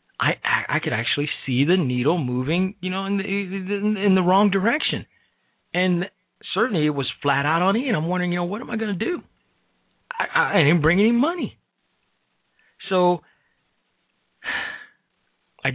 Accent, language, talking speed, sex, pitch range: American, English, 160 wpm, male, 130-185 Hz